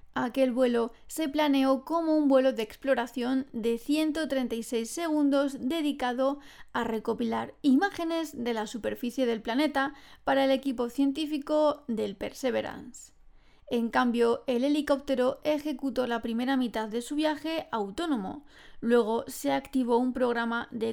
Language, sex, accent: Spanish, female, Spanish